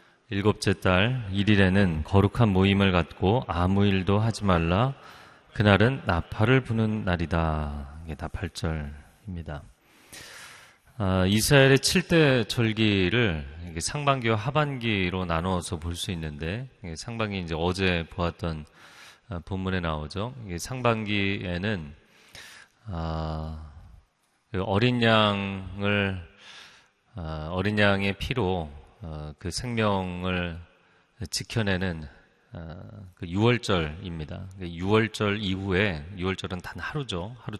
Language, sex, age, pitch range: Korean, male, 30-49, 85-110 Hz